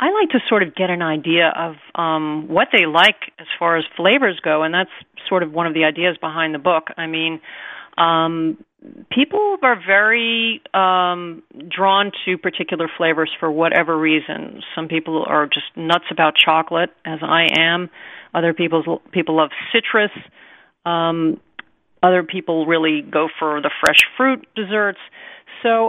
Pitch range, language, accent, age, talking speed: 165-210 Hz, English, American, 40-59, 160 wpm